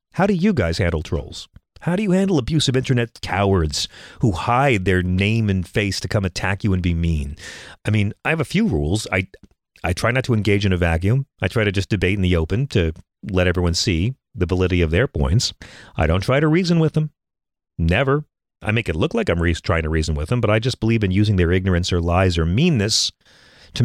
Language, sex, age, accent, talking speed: English, male, 40-59, American, 230 wpm